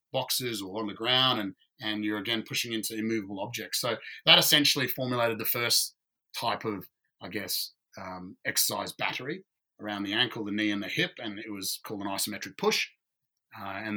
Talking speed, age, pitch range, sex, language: 185 wpm, 30-49, 105-130 Hz, male, English